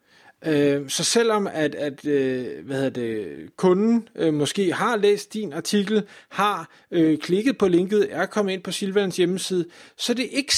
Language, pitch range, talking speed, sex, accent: Danish, 145-200 Hz, 155 wpm, male, native